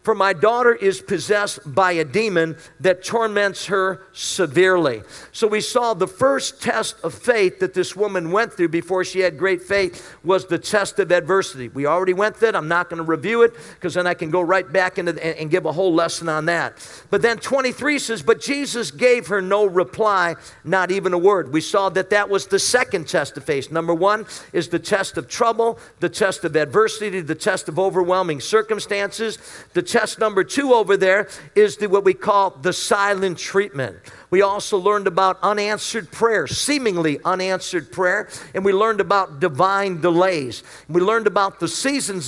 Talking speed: 195 wpm